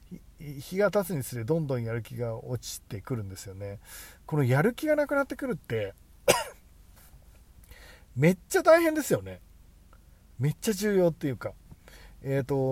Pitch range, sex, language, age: 110-165 Hz, male, Japanese, 40-59